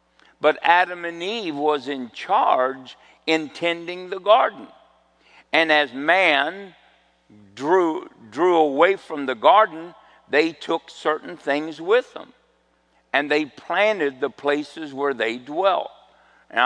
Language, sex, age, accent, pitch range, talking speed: English, male, 60-79, American, 130-170 Hz, 125 wpm